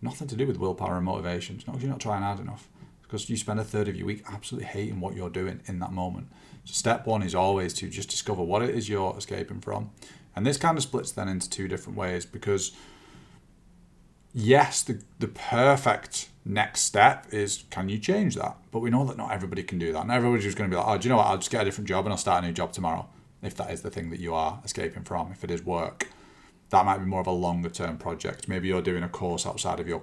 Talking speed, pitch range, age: 265 wpm, 90-110 Hz, 30-49